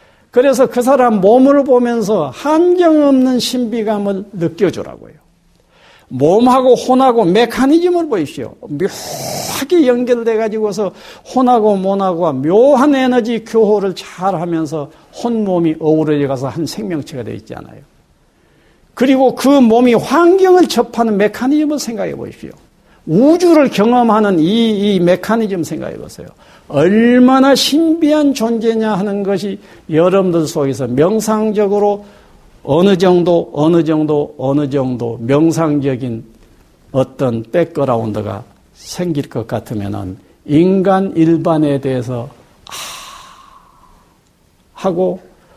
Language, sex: Korean, male